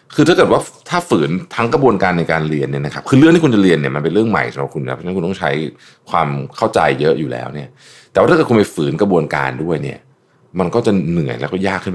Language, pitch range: Thai, 80-125 Hz